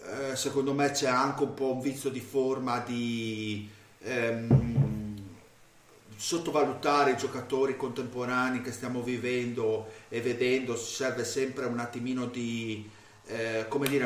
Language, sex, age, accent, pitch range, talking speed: Italian, male, 30-49, native, 115-135 Hz, 110 wpm